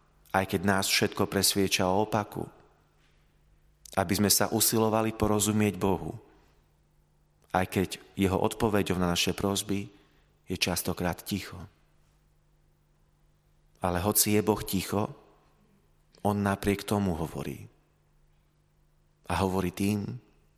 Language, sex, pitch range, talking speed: Slovak, male, 85-105 Hz, 100 wpm